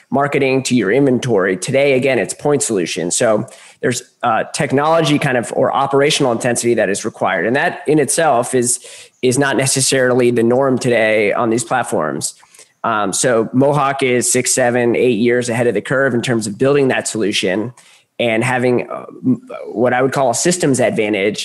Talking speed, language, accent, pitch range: 180 wpm, English, American, 120-145 Hz